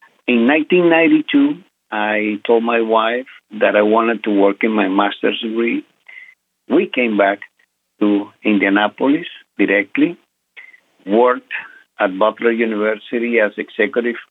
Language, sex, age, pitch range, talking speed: English, male, 50-69, 110-150 Hz, 115 wpm